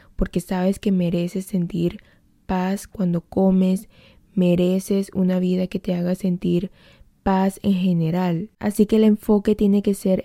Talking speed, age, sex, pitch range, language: 145 wpm, 20-39, female, 180-200 Hz, Spanish